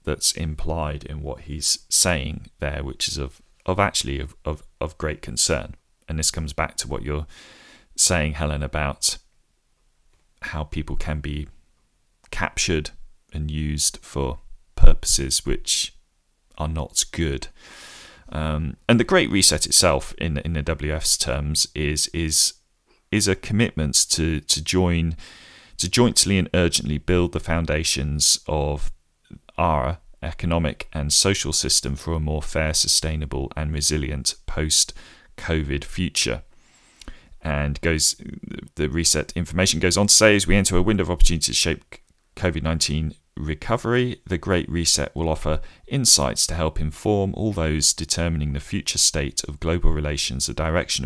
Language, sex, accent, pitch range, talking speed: English, male, British, 75-85 Hz, 140 wpm